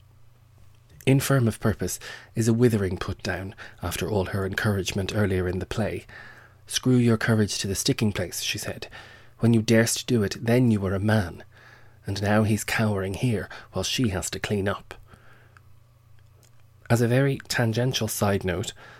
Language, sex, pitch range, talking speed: English, male, 100-115 Hz, 165 wpm